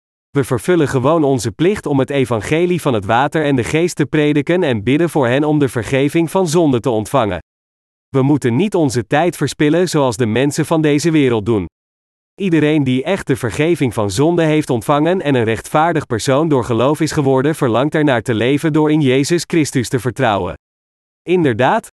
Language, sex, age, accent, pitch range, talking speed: Dutch, male, 40-59, Dutch, 120-155 Hz, 185 wpm